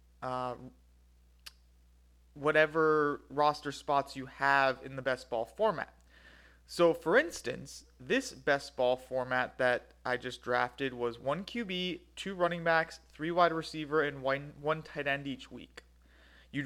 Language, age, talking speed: English, 30-49, 140 wpm